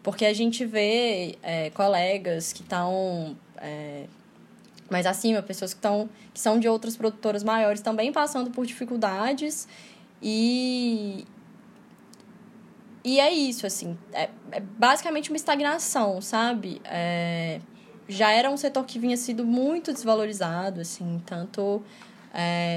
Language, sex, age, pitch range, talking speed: Portuguese, female, 10-29, 195-240 Hz, 125 wpm